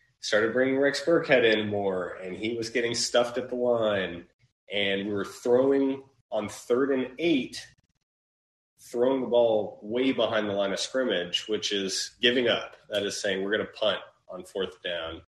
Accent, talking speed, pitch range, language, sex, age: American, 175 wpm, 100-125 Hz, English, male, 30-49